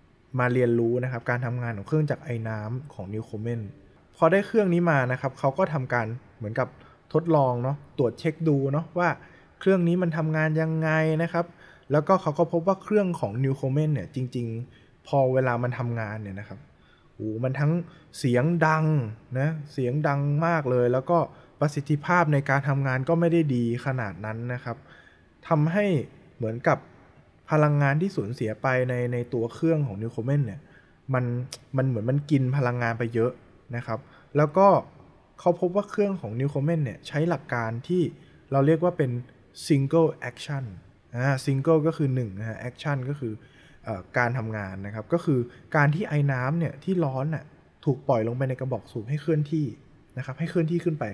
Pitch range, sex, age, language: 120-160 Hz, male, 20-39, Thai